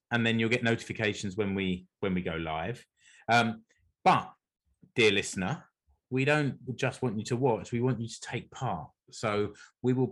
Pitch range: 105-140 Hz